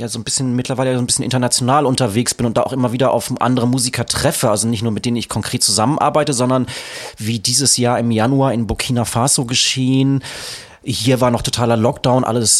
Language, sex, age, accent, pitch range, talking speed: German, male, 30-49, German, 110-130 Hz, 210 wpm